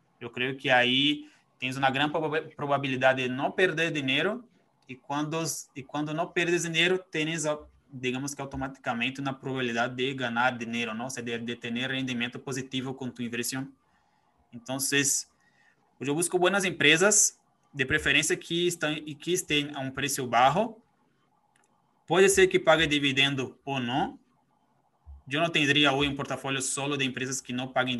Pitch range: 125-150 Hz